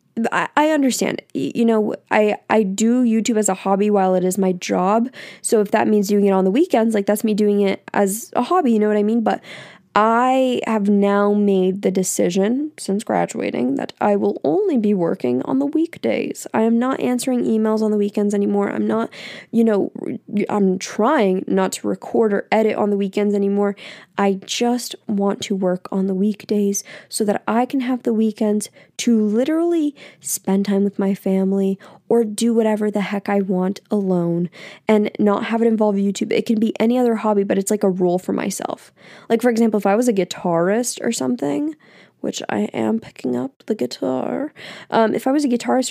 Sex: female